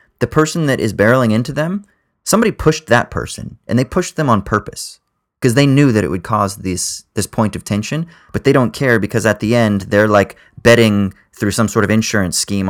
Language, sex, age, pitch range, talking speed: English, male, 20-39, 105-130 Hz, 215 wpm